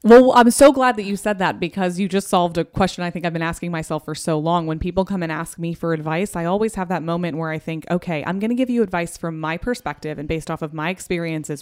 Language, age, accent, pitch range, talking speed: English, 20-39, American, 160-195 Hz, 285 wpm